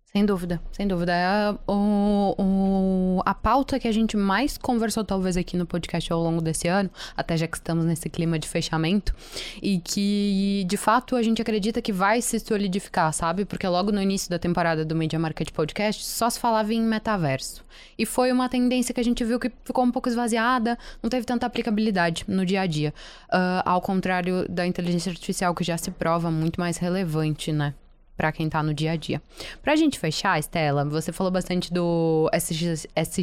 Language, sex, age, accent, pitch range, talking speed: Portuguese, female, 10-29, Brazilian, 165-220 Hz, 195 wpm